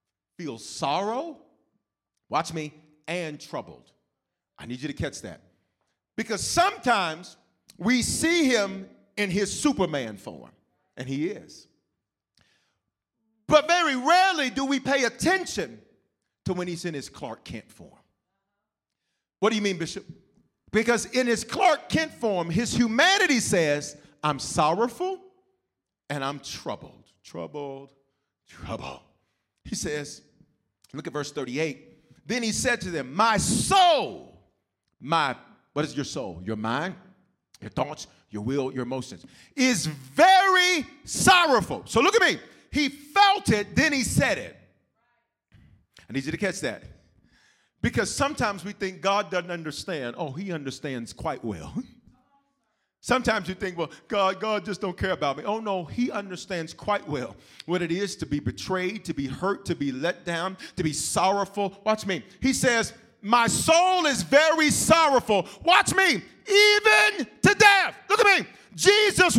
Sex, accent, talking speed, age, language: male, American, 145 wpm, 40-59, English